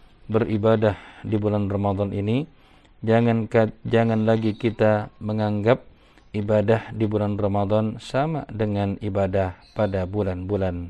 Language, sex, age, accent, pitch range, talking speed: Indonesian, male, 50-69, native, 100-115 Hz, 110 wpm